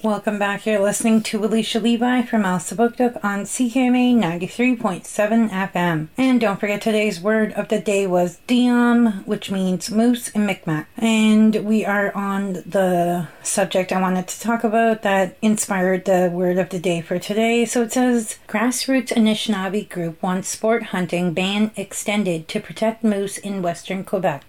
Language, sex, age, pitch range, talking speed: French, female, 30-49, 195-225 Hz, 160 wpm